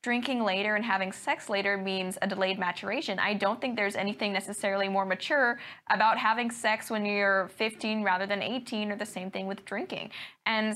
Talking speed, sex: 190 wpm, female